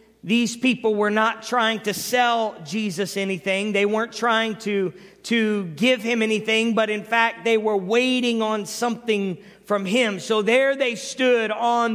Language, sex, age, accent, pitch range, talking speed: English, male, 50-69, American, 220-250 Hz, 160 wpm